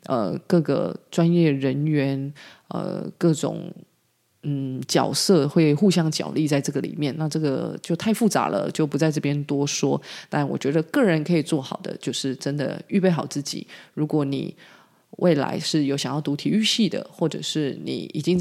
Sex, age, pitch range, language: female, 20-39, 145-175 Hz, Chinese